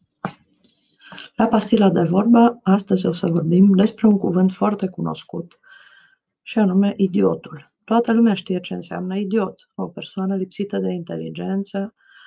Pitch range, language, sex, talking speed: 180-230 Hz, Romanian, female, 130 wpm